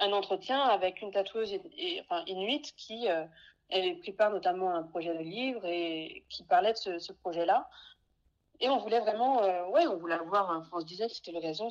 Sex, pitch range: female, 170-225 Hz